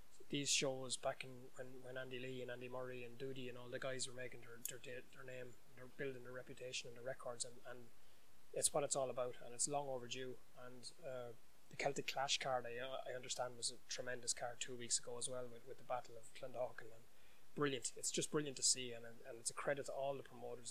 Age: 20-39